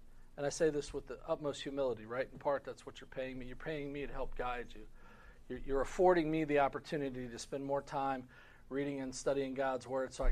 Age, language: 40-59, English